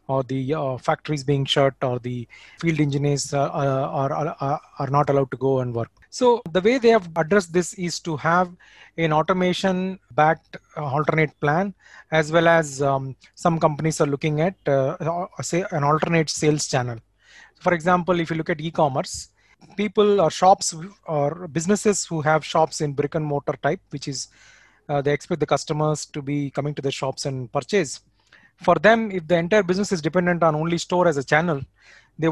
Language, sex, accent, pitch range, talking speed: English, male, Indian, 140-175 Hz, 185 wpm